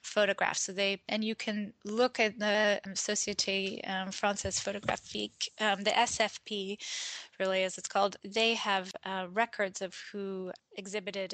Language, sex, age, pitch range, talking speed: English, female, 20-39, 185-205 Hz, 140 wpm